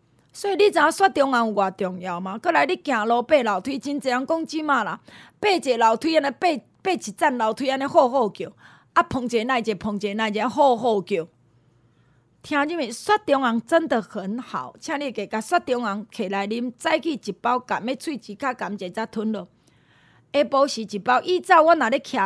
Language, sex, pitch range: Chinese, female, 210-285 Hz